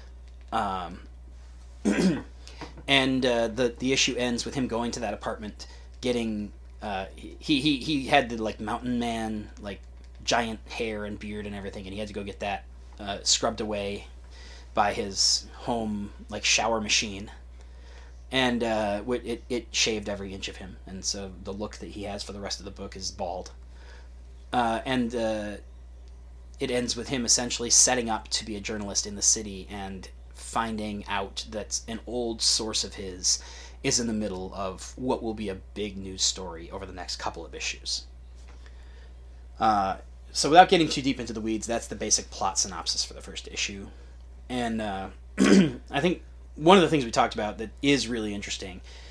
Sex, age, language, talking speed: male, 30-49, English, 180 wpm